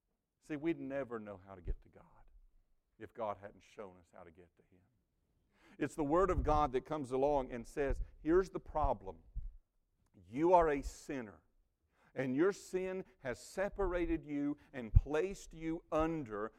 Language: English